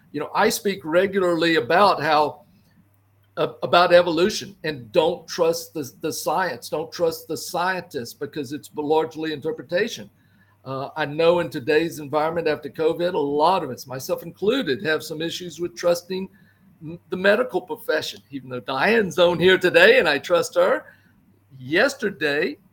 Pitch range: 145-180 Hz